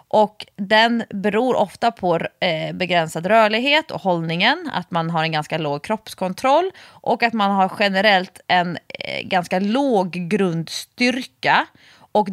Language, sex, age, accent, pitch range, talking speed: Swedish, female, 30-49, native, 170-230 Hz, 135 wpm